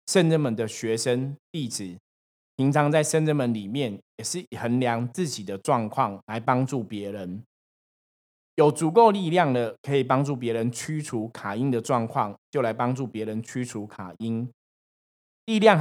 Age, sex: 20-39, male